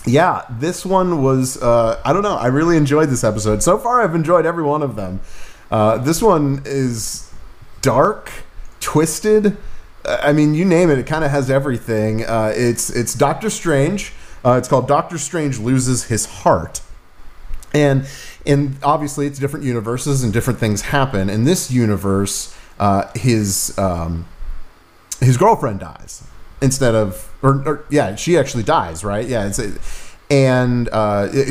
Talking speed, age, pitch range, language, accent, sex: 160 wpm, 30-49, 105-140 Hz, English, American, male